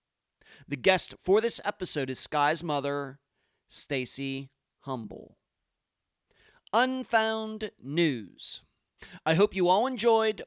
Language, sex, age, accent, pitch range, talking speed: English, male, 40-59, American, 140-205 Hz, 95 wpm